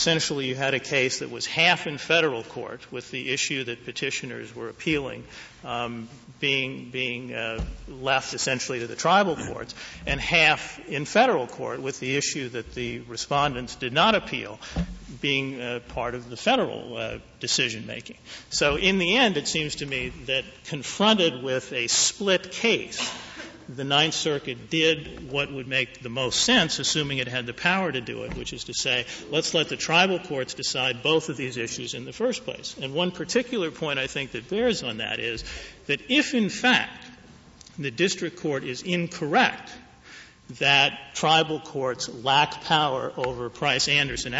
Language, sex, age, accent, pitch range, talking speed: English, male, 50-69, American, 130-165 Hz, 170 wpm